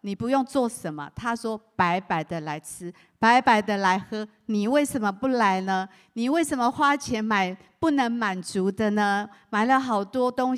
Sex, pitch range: female, 185-235 Hz